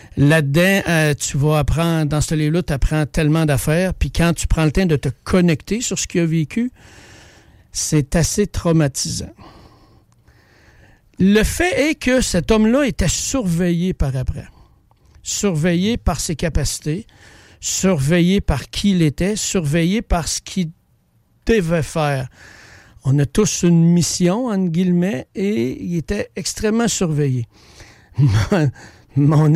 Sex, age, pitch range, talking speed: male, 60-79, 150-195 Hz, 135 wpm